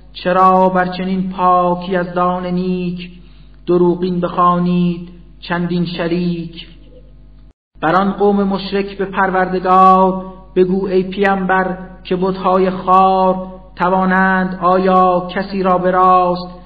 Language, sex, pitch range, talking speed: Persian, male, 175-185 Hz, 100 wpm